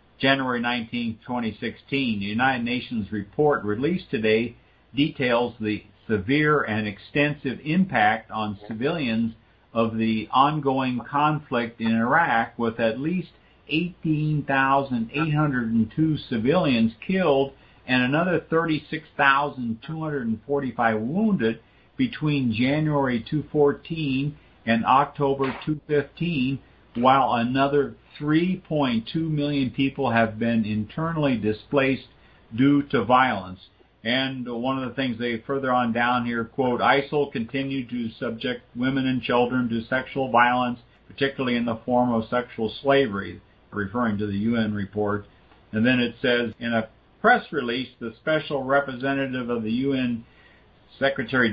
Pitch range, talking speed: 115-140 Hz, 115 wpm